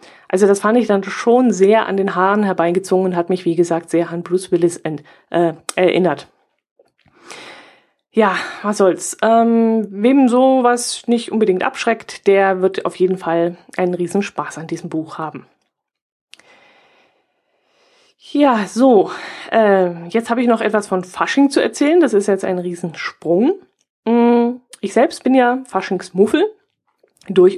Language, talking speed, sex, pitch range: German, 150 wpm, female, 175-230 Hz